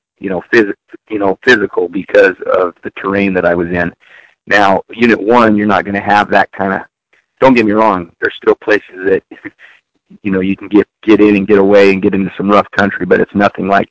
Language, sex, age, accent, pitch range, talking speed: English, male, 40-59, American, 100-115 Hz, 225 wpm